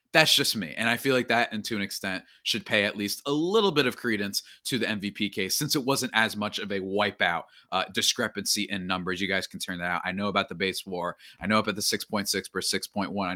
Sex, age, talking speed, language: male, 20-39, 250 wpm, English